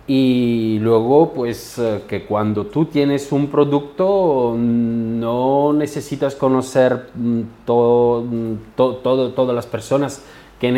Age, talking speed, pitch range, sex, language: 30-49, 105 wpm, 120-140 Hz, male, Spanish